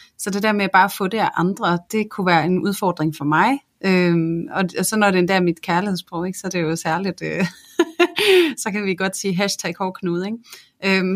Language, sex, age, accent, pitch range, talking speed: Danish, female, 30-49, native, 175-210 Hz, 210 wpm